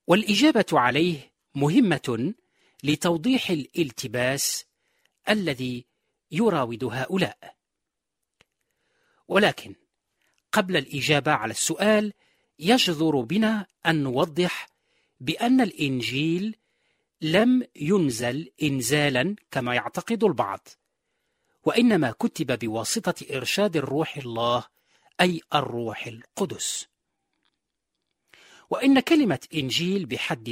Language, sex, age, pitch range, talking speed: Arabic, male, 40-59, 145-210 Hz, 75 wpm